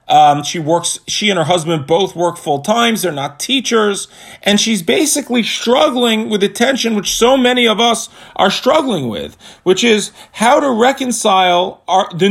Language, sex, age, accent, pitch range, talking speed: English, male, 40-59, American, 180-245 Hz, 180 wpm